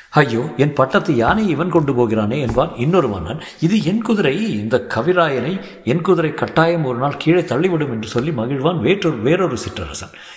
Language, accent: Tamil, native